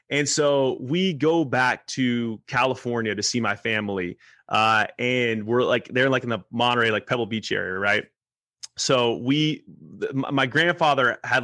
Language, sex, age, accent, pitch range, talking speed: English, male, 30-49, American, 115-140 Hz, 165 wpm